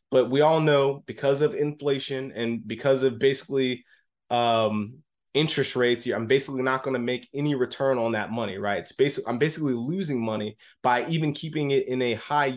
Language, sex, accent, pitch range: English, male, American, 120-145 Hz